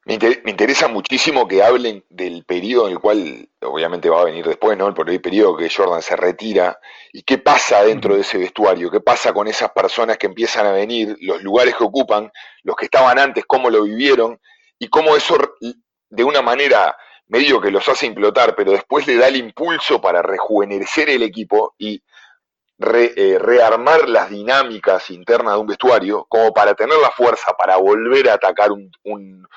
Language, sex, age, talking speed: Spanish, male, 40-59, 185 wpm